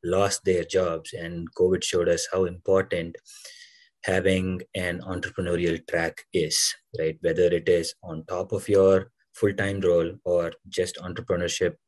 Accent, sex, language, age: Indian, male, English, 30-49